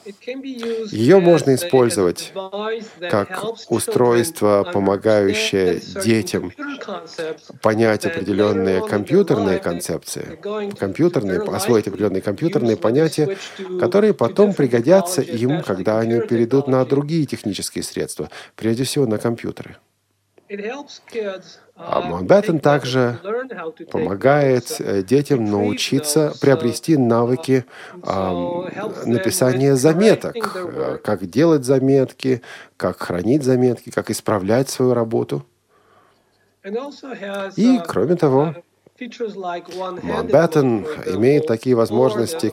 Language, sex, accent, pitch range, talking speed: Russian, male, native, 110-165 Hz, 80 wpm